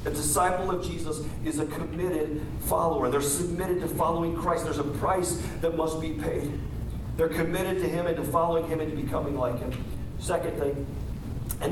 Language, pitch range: English, 150-185 Hz